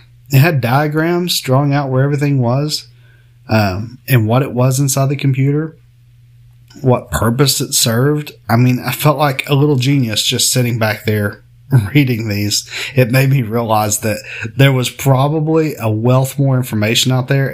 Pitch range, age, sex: 115-145 Hz, 30-49, male